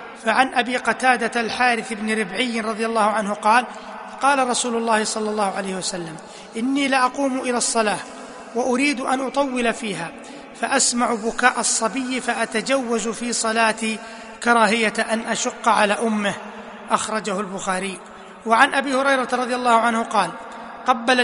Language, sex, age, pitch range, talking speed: Arabic, male, 30-49, 215-245 Hz, 130 wpm